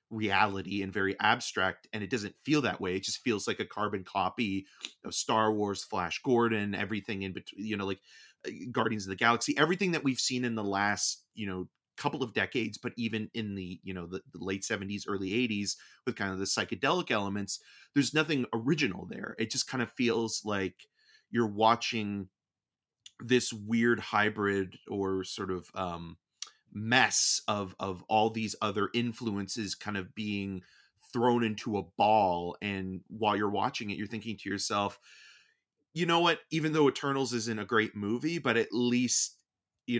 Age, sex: 30-49, male